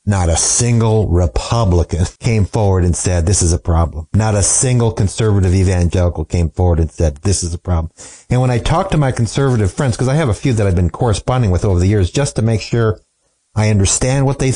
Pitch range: 90-125 Hz